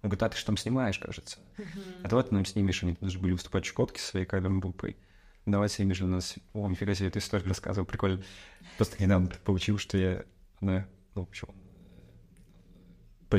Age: 20-39